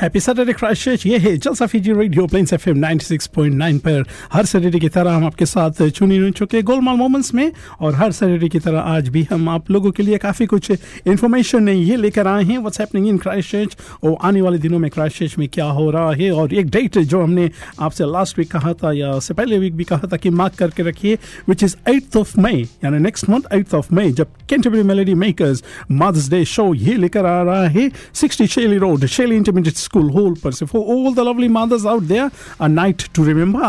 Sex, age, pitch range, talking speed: male, 50-69, 155-205 Hz, 175 wpm